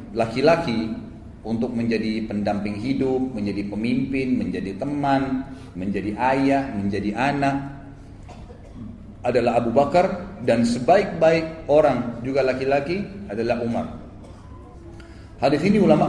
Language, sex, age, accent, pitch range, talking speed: Indonesian, male, 30-49, native, 115-160 Hz, 95 wpm